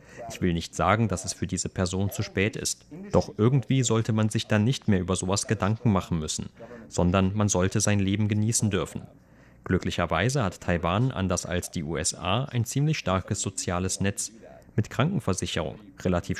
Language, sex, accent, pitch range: German, male, German, 90-115 Hz